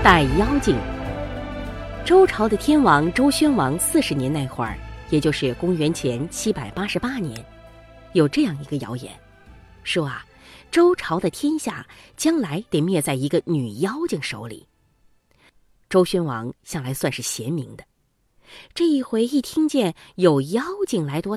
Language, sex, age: Chinese, female, 30-49